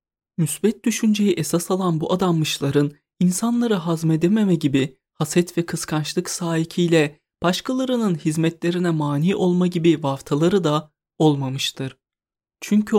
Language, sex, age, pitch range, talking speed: Turkish, male, 30-49, 150-190 Hz, 100 wpm